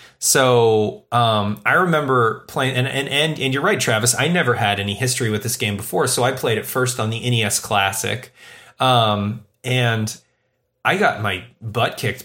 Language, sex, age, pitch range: English, male, 30-49, 105-130 Hz